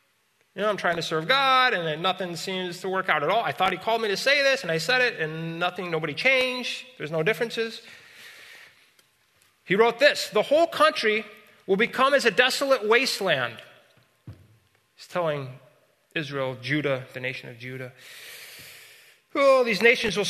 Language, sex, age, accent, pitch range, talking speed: English, male, 30-49, American, 140-215 Hz, 170 wpm